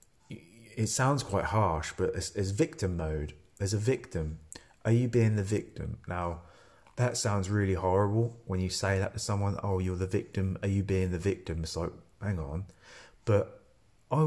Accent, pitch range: British, 95-110 Hz